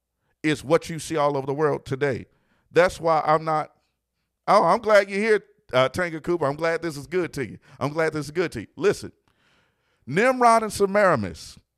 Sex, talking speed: male, 200 wpm